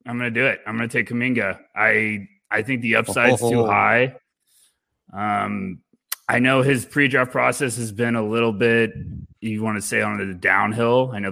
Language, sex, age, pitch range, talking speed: English, male, 20-39, 105-125 Hz, 185 wpm